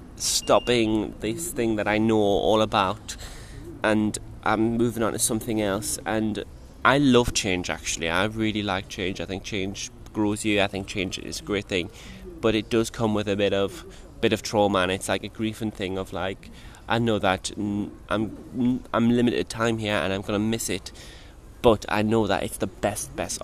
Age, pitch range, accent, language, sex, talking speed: 20-39, 95-115 Hz, British, English, male, 195 wpm